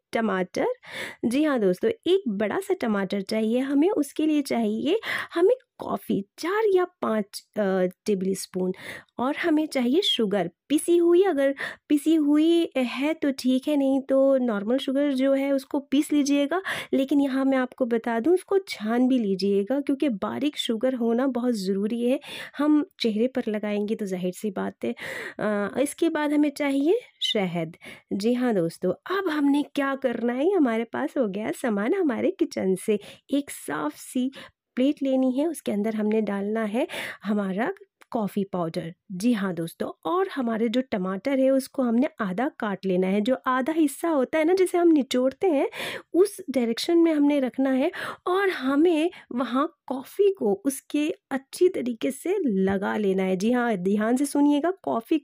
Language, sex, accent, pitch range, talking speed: Hindi, female, native, 220-310 Hz, 165 wpm